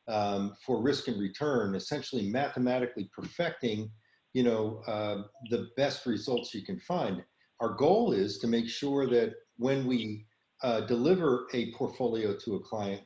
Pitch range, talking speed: 110-135 Hz, 150 wpm